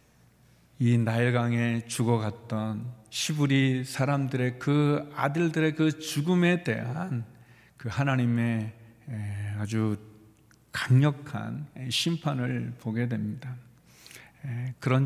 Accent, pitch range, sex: native, 115-150 Hz, male